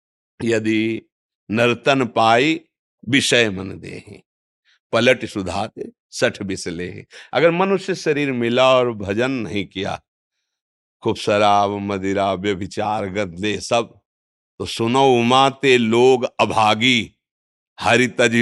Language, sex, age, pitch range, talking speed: Hindi, male, 60-79, 100-155 Hz, 100 wpm